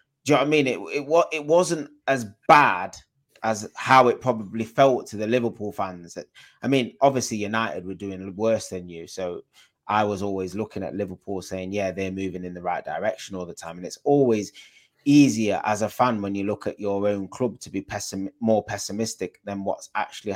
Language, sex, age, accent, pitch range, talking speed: English, male, 20-39, British, 95-120 Hz, 210 wpm